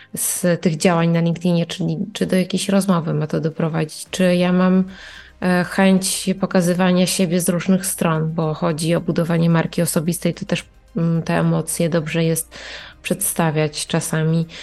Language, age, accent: Polish, 20-39, native